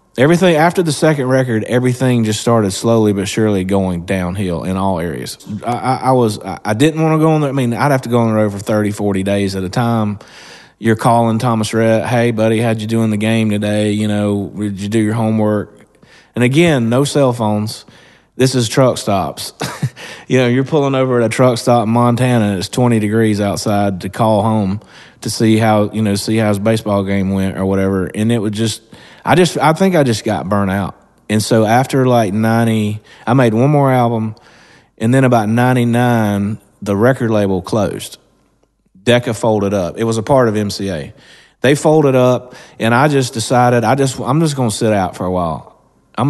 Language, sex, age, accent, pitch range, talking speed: English, male, 30-49, American, 100-120 Hz, 210 wpm